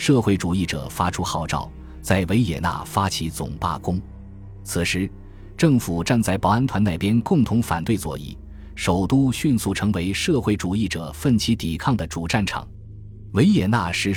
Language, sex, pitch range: Chinese, male, 85-115 Hz